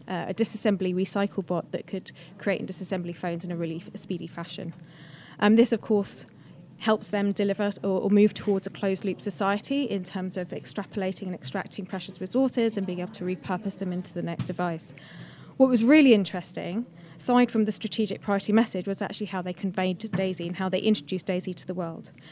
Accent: British